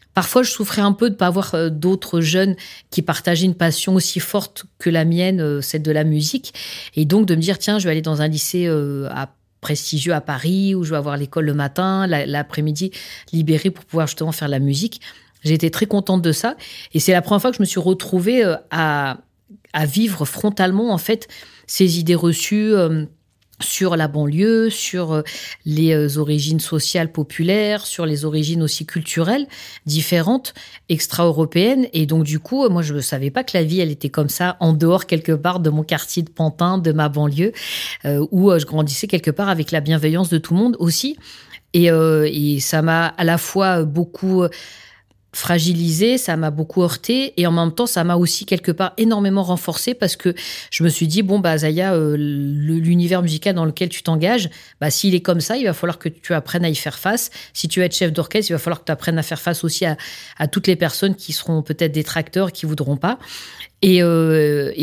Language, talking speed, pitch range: French, 215 wpm, 155-190 Hz